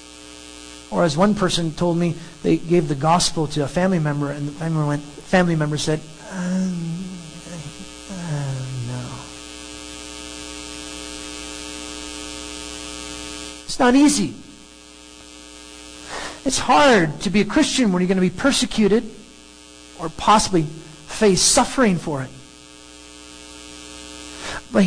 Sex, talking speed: male, 115 wpm